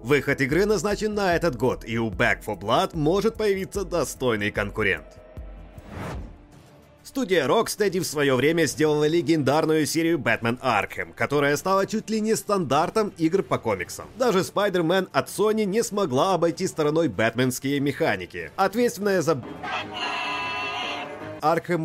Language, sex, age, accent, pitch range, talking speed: Russian, male, 30-49, native, 130-200 Hz, 130 wpm